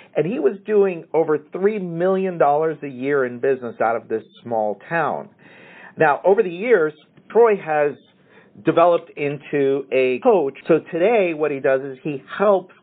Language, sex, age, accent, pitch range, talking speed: English, male, 50-69, American, 130-190 Hz, 160 wpm